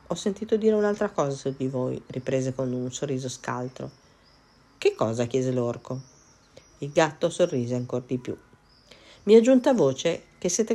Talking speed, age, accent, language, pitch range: 160 wpm, 40-59, native, Italian, 125-185 Hz